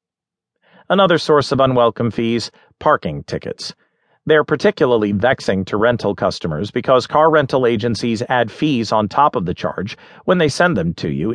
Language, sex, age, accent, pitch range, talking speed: English, male, 40-59, American, 115-150 Hz, 160 wpm